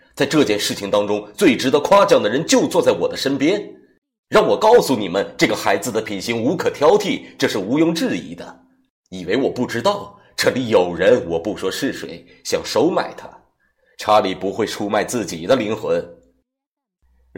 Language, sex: Chinese, male